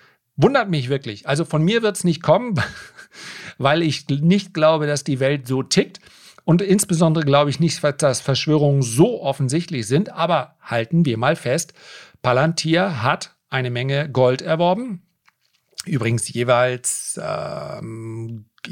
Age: 40-59